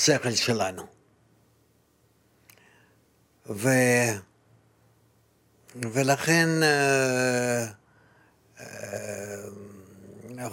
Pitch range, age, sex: 115-135 Hz, 60-79, male